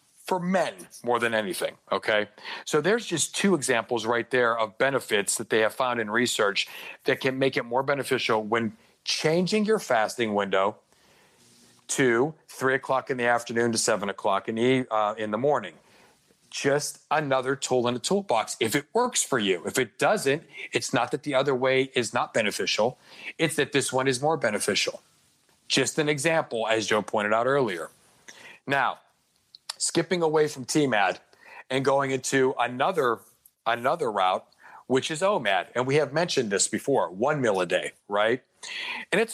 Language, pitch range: English, 120-170 Hz